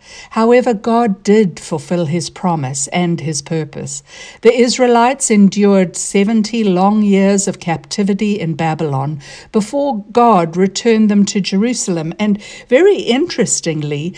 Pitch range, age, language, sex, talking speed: 165-220 Hz, 60-79, English, female, 120 wpm